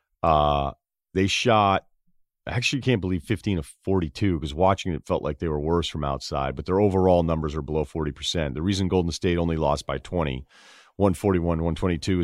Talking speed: 180 wpm